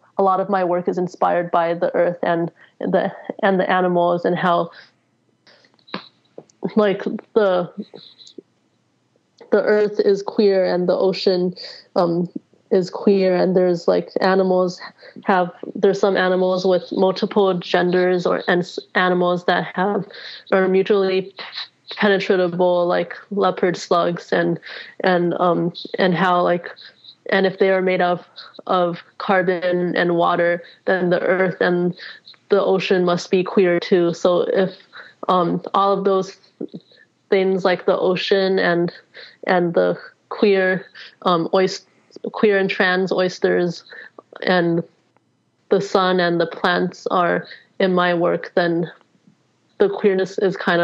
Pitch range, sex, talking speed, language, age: 175-195 Hz, female, 130 wpm, English, 20-39